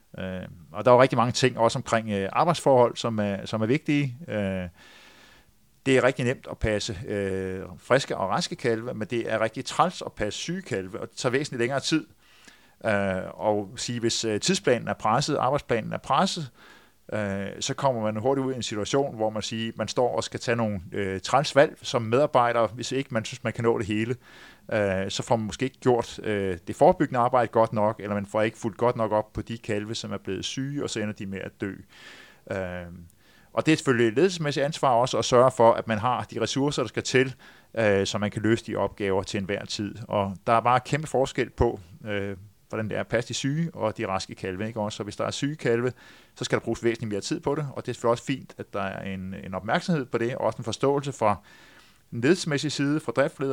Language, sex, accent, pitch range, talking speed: Danish, male, native, 105-130 Hz, 235 wpm